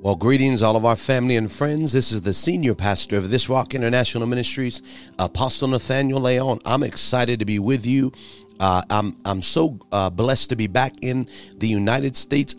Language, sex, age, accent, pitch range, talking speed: English, male, 40-59, American, 105-130 Hz, 190 wpm